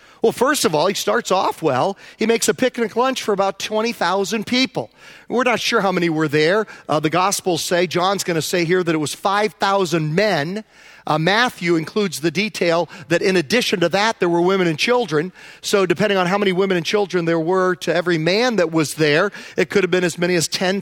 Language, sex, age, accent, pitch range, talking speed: English, male, 40-59, American, 170-220 Hz, 220 wpm